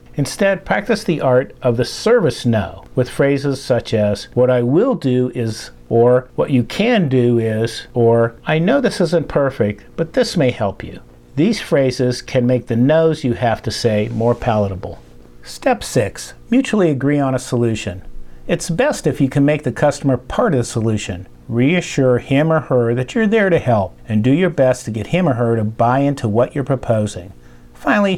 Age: 50-69